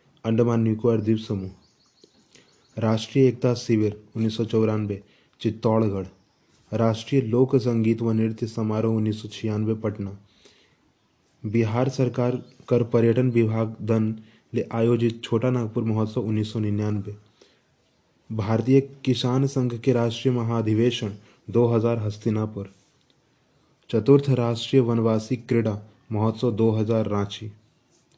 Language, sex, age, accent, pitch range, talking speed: Hindi, male, 20-39, native, 110-125 Hz, 100 wpm